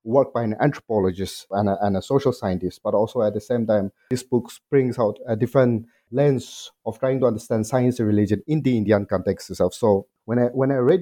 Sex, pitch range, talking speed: male, 105-130 Hz, 225 wpm